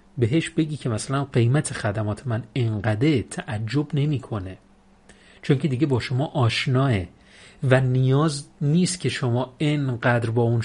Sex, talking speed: male, 135 wpm